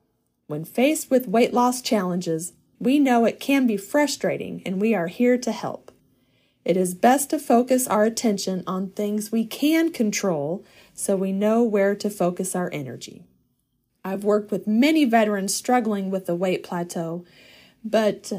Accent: American